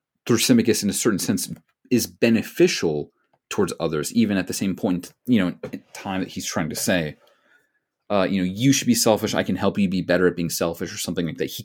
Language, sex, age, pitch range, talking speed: English, male, 30-49, 95-135 Hz, 220 wpm